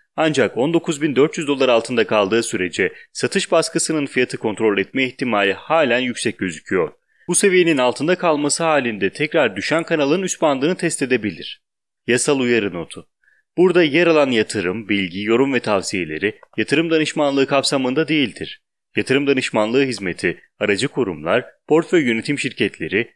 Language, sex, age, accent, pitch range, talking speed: English, male, 30-49, Turkish, 115-155 Hz, 130 wpm